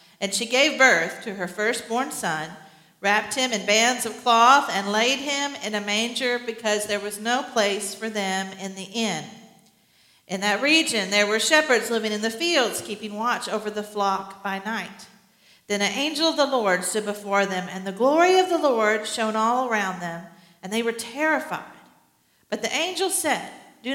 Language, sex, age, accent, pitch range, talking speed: English, female, 50-69, American, 205-275 Hz, 190 wpm